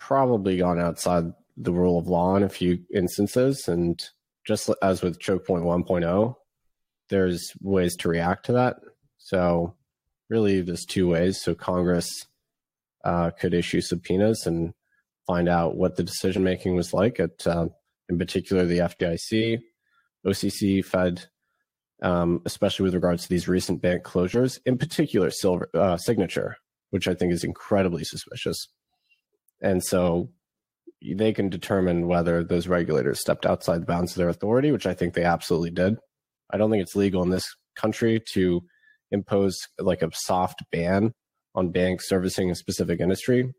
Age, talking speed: 30-49, 155 wpm